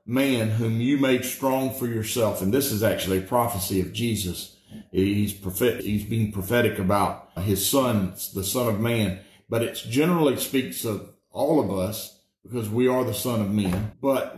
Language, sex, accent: English, male, American